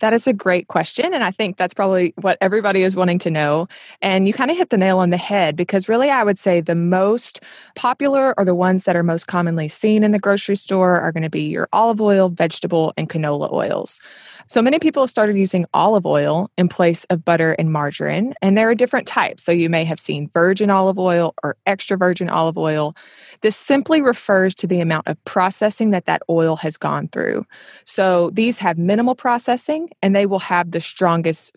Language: English